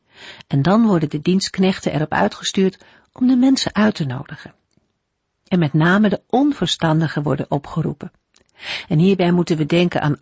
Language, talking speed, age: Dutch, 155 wpm, 50-69